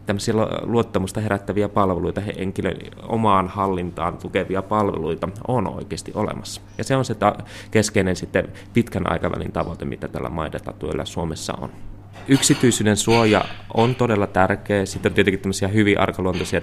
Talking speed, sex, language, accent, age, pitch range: 130 wpm, male, Finnish, native, 20-39, 90-105 Hz